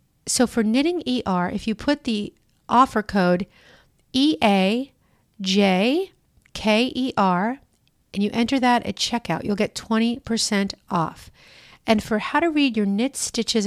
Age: 40-59